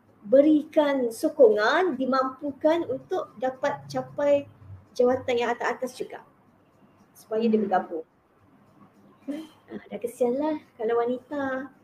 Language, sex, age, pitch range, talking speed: Malay, female, 20-39, 220-275 Hz, 90 wpm